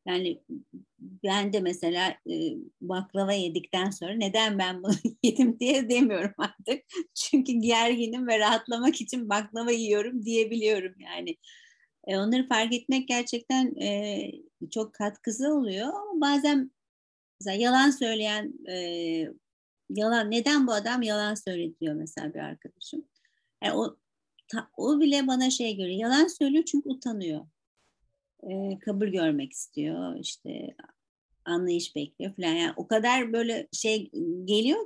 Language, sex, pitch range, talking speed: Turkish, female, 195-260 Hz, 125 wpm